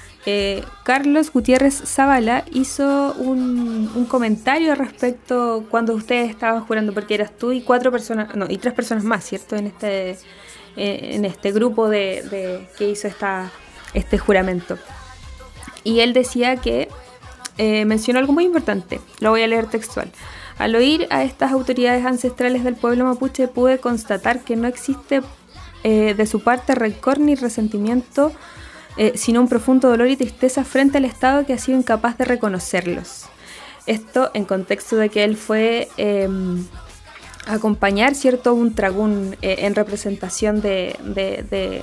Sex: female